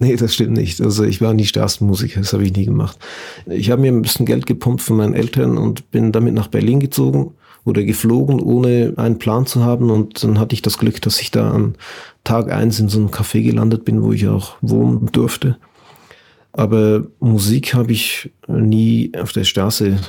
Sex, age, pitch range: male, 40-59, 105-115 Hz